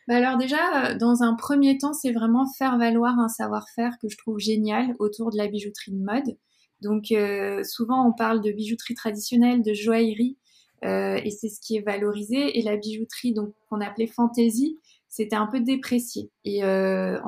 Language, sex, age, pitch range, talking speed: French, female, 20-39, 205-240 Hz, 185 wpm